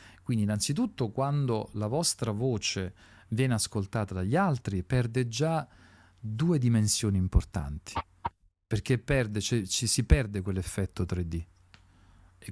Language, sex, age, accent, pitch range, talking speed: Italian, male, 40-59, native, 95-125 Hz, 105 wpm